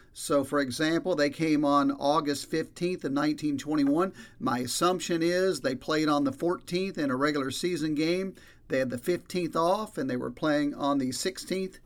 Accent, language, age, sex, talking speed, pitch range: American, English, 50-69, male, 175 wpm, 145-195 Hz